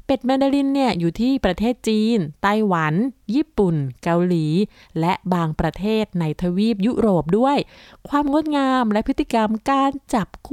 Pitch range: 185-255 Hz